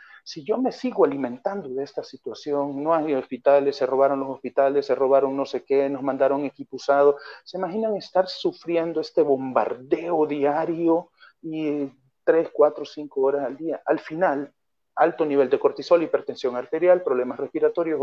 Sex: male